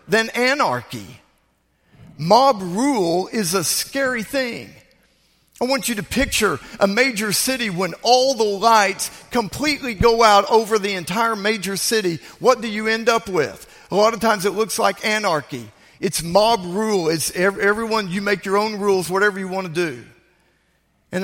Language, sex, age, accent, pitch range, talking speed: English, male, 50-69, American, 180-230 Hz, 165 wpm